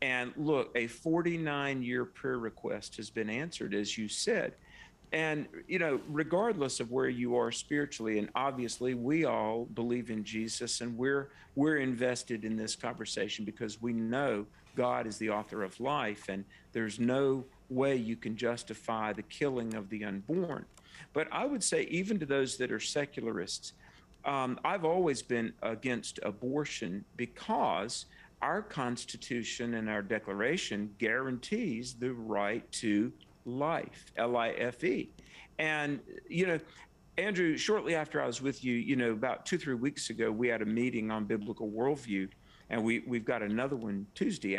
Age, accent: 50-69, American